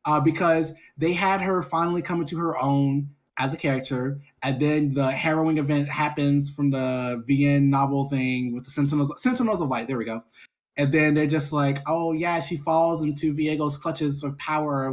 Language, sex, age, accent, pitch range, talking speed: English, male, 20-39, American, 130-155 Hz, 195 wpm